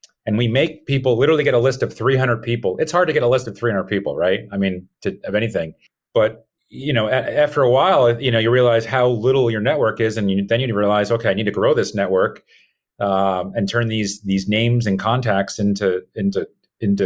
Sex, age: male, 40-59